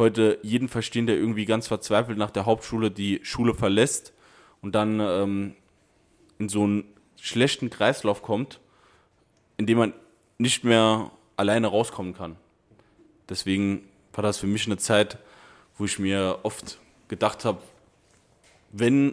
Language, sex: German, male